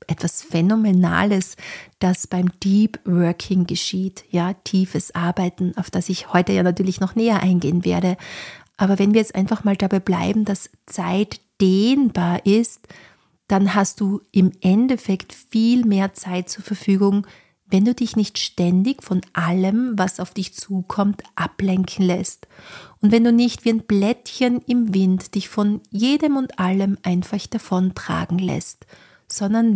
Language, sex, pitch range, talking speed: German, female, 185-215 Hz, 145 wpm